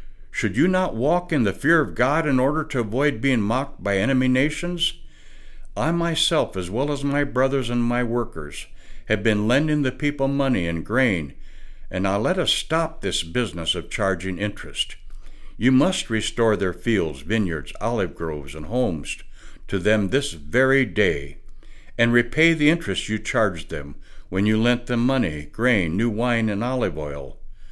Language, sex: English, male